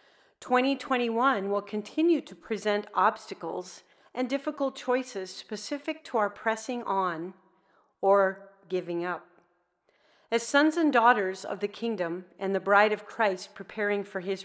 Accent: American